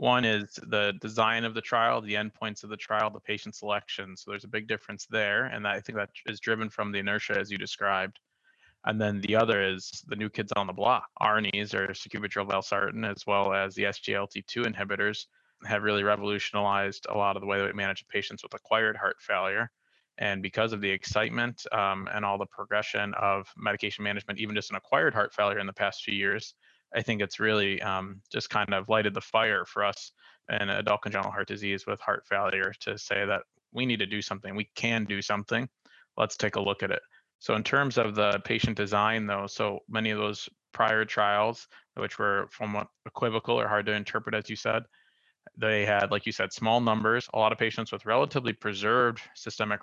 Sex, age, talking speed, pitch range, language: male, 20-39, 210 wpm, 100-110 Hz, English